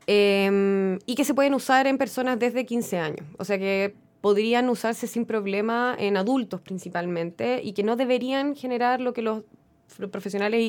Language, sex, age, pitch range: Spanish, female, 20-39, 190-235 Hz